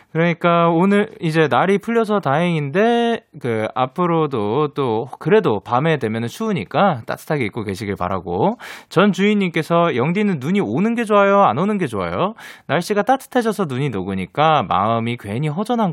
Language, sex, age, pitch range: Korean, male, 20-39, 130-210 Hz